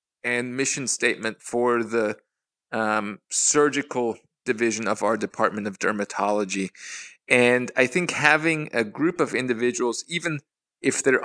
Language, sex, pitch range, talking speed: English, male, 115-140 Hz, 130 wpm